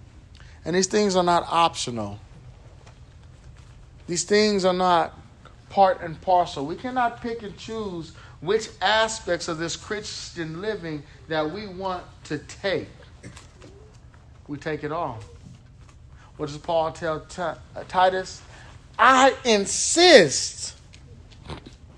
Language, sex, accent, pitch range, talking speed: English, male, American, 125-210 Hz, 110 wpm